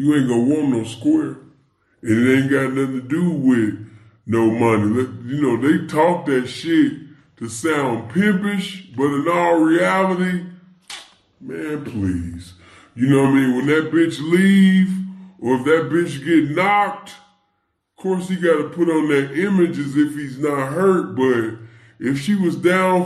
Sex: female